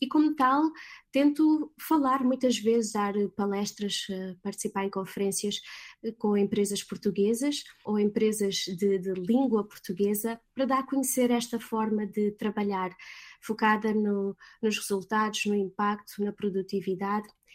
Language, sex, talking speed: Portuguese, female, 125 wpm